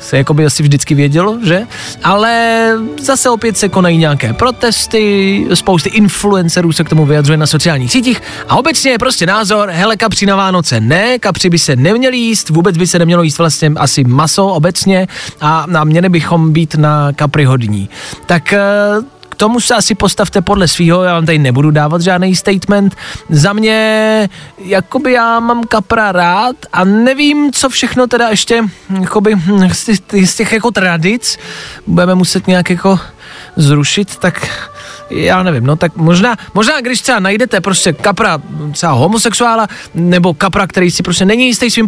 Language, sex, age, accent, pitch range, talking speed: Czech, male, 20-39, native, 165-215 Hz, 165 wpm